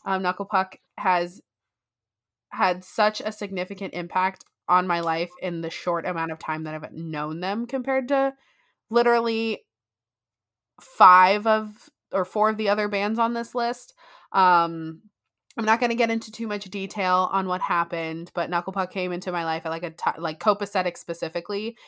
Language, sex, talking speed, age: English, female, 175 wpm, 20-39